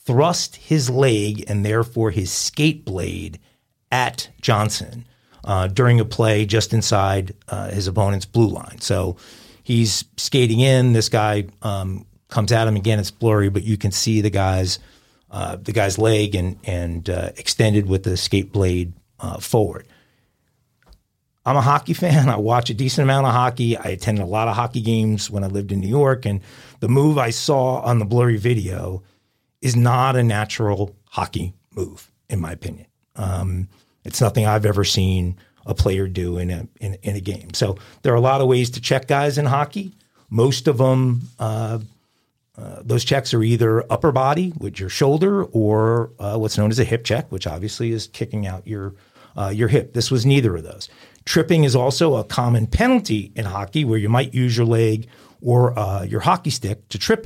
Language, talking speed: English, 190 wpm